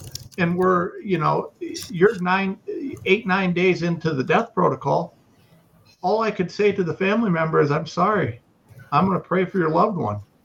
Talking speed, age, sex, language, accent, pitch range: 185 wpm, 50-69, male, English, American, 160-210 Hz